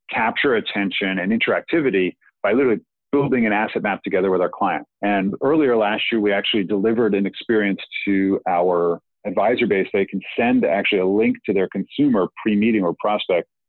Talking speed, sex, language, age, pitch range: 170 wpm, male, English, 40-59, 95-135 Hz